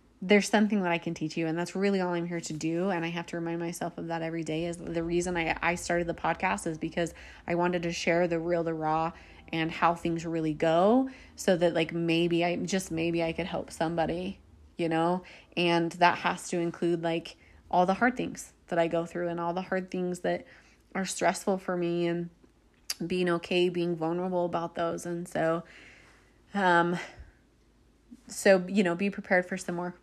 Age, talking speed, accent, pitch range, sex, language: 20-39, 205 wpm, American, 170-190 Hz, female, English